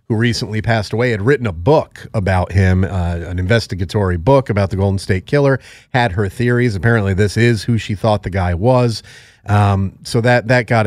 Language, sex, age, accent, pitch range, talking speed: English, male, 40-59, American, 100-130 Hz, 200 wpm